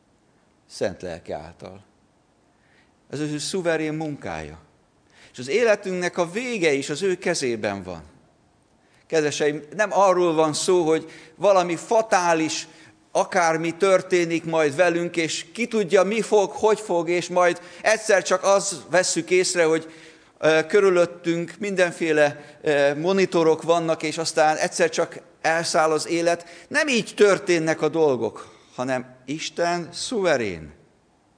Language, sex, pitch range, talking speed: Hungarian, male, 130-175 Hz, 120 wpm